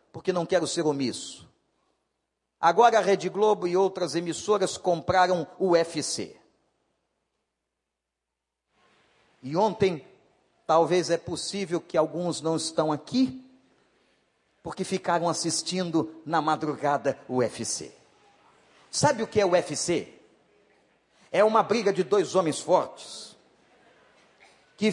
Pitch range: 170-225 Hz